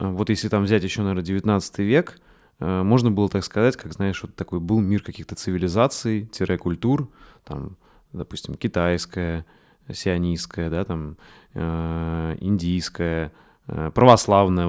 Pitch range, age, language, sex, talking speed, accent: 85-105 Hz, 20-39, Russian, male, 120 wpm, native